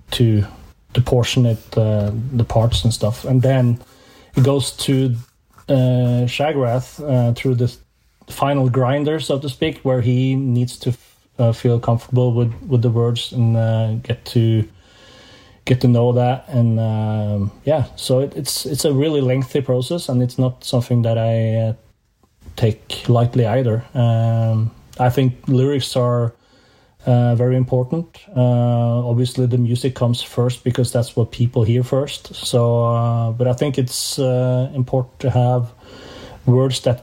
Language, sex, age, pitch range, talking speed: English, male, 30-49, 115-130 Hz, 155 wpm